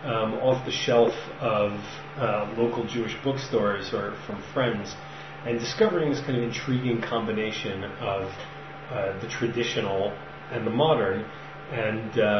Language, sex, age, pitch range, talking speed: English, male, 30-49, 105-130 Hz, 130 wpm